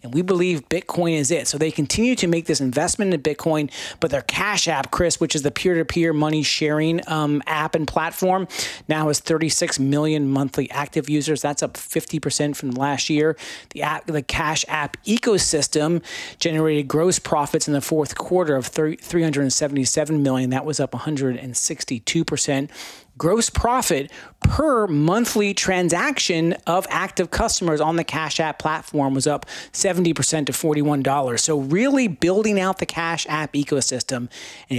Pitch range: 145-170 Hz